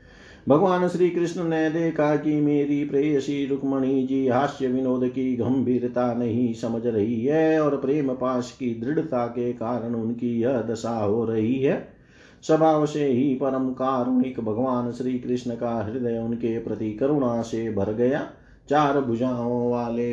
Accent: native